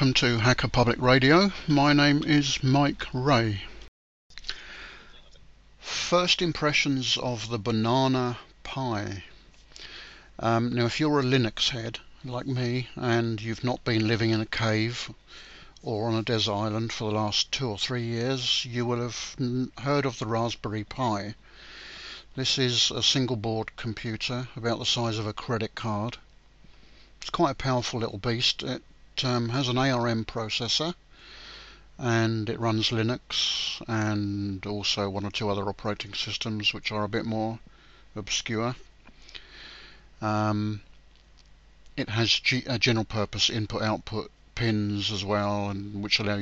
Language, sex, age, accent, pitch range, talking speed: English, male, 60-79, British, 105-125 Hz, 145 wpm